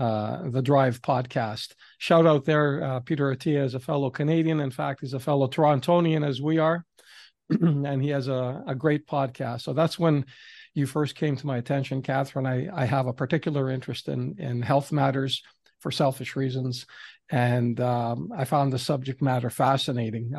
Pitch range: 130-155 Hz